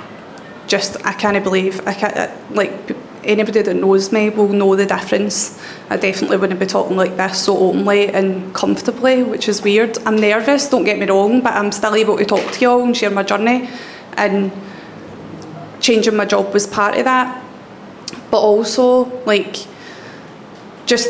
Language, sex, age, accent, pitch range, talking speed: English, female, 20-39, British, 200-230 Hz, 170 wpm